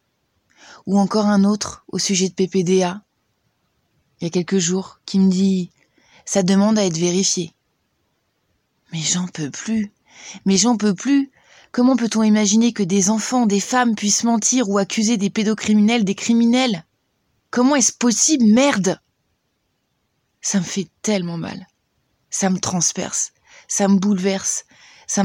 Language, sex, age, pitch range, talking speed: French, female, 20-39, 185-215 Hz, 145 wpm